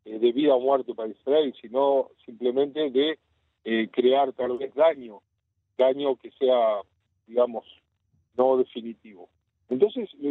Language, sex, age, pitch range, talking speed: Spanish, male, 50-69, 130-205 Hz, 130 wpm